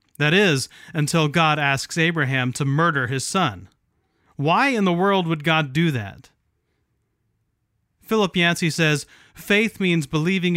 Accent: American